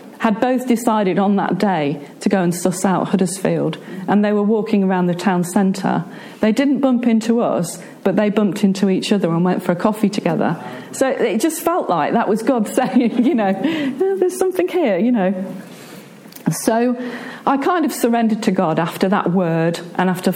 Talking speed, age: 190 wpm, 40-59